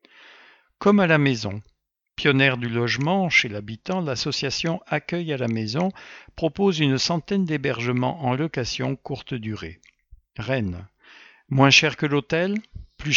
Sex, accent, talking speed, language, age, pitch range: male, French, 130 wpm, English, 60-79, 115-150 Hz